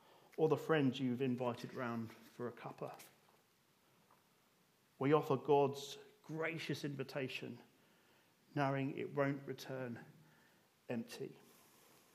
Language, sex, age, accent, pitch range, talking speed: English, male, 40-59, British, 130-160 Hz, 95 wpm